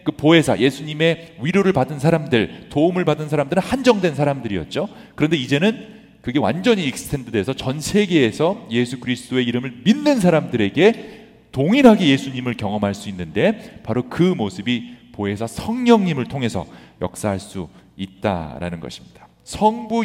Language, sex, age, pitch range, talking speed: English, male, 40-59, 110-175 Hz, 115 wpm